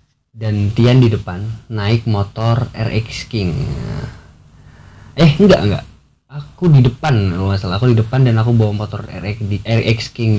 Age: 20-39